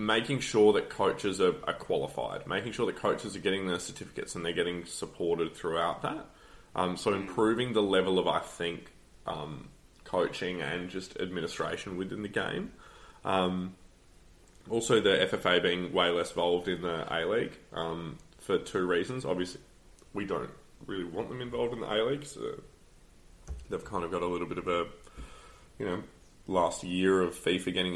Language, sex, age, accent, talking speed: English, male, 20-39, Australian, 165 wpm